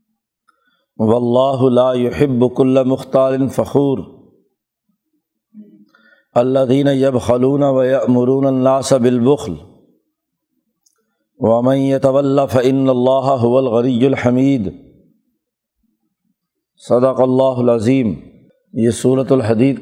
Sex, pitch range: male, 120-155 Hz